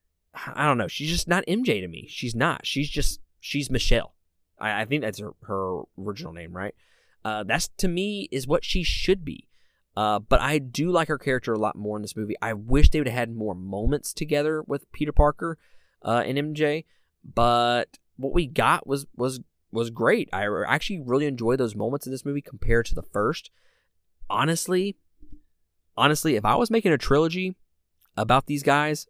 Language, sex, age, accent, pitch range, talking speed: English, male, 20-39, American, 100-145 Hz, 190 wpm